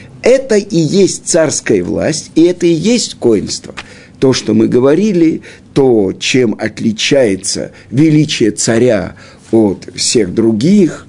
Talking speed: 120 wpm